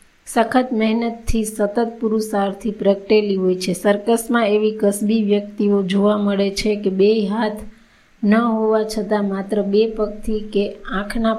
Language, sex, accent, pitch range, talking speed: Gujarati, female, native, 195-215 Hz, 95 wpm